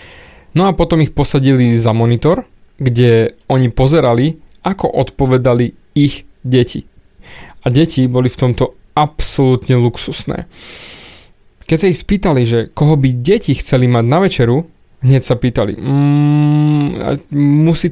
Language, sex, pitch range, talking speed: Slovak, male, 120-150 Hz, 125 wpm